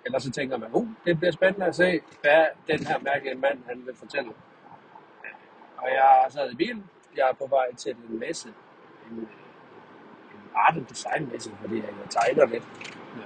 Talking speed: 170 wpm